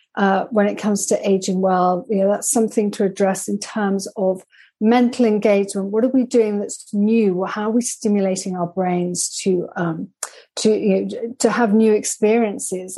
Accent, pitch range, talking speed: British, 190-220 Hz, 180 wpm